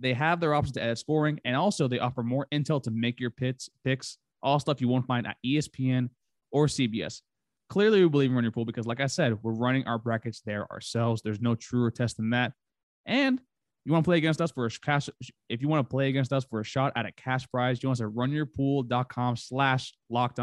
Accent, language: American, English